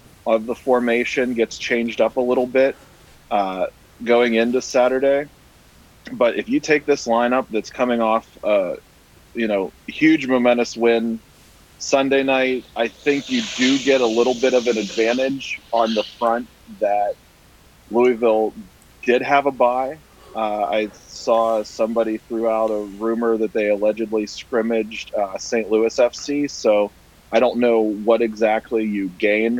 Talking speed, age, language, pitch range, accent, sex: 150 wpm, 30-49, English, 105-125 Hz, American, male